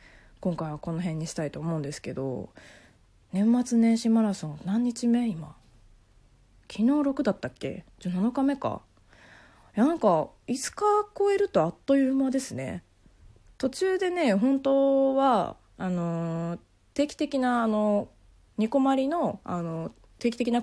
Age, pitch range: 20-39, 160-255 Hz